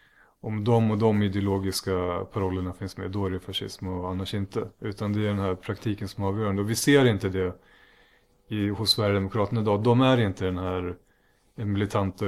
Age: 30-49